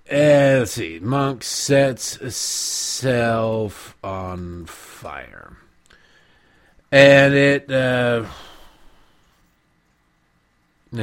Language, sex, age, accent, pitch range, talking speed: English, male, 50-69, American, 105-150 Hz, 60 wpm